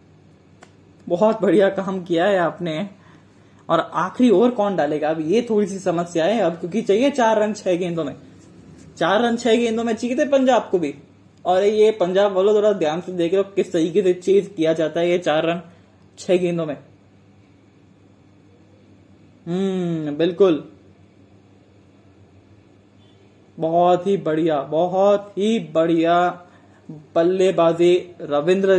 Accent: native